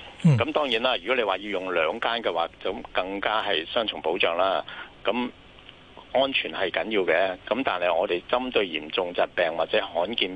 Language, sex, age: Chinese, male, 50-69